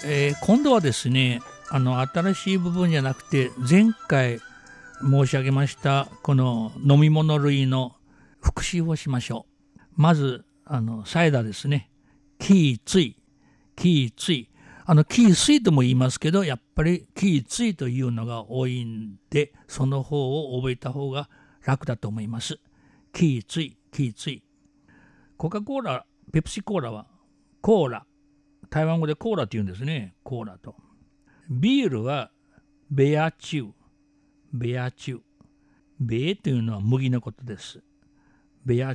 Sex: male